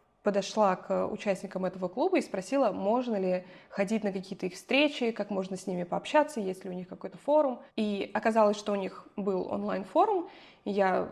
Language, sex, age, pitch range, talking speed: Russian, female, 20-39, 195-240 Hz, 180 wpm